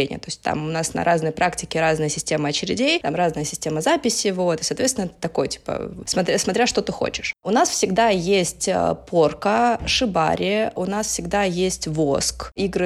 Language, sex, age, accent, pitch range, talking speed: Russian, female, 20-39, native, 170-205 Hz, 170 wpm